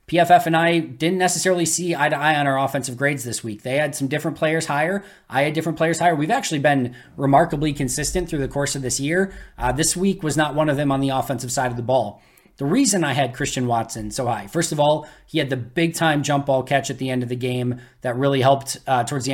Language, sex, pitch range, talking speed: English, male, 130-150 Hz, 260 wpm